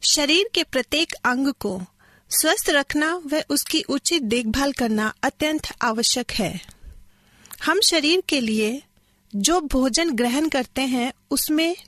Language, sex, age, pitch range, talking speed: Hindi, female, 30-49, 235-315 Hz, 125 wpm